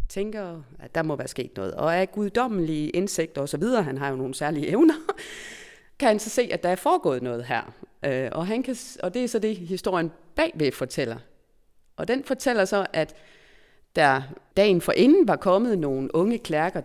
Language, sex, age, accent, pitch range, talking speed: Danish, female, 30-49, native, 155-225 Hz, 185 wpm